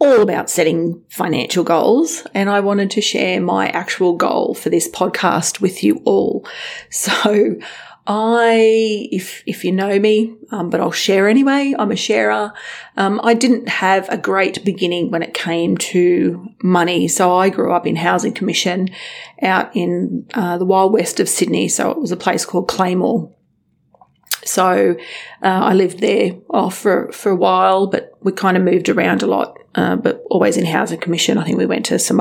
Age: 30-49